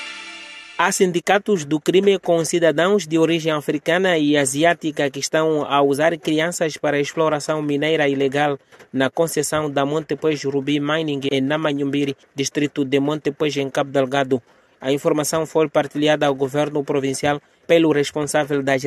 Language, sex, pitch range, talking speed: English, male, 140-155 Hz, 145 wpm